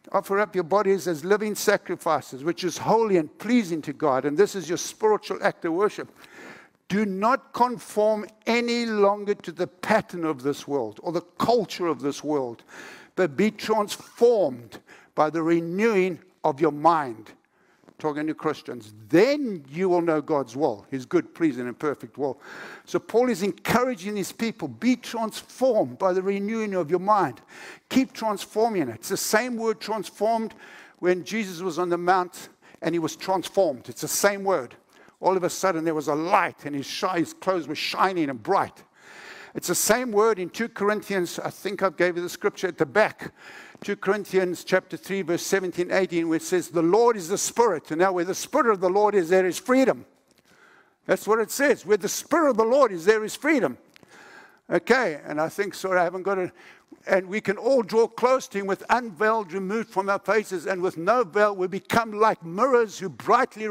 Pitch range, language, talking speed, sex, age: 175-220 Hz, English, 195 wpm, male, 60-79